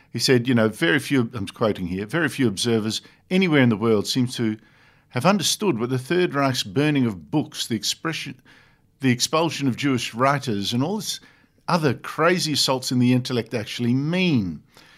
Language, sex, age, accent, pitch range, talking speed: English, male, 50-69, Australian, 115-145 Hz, 180 wpm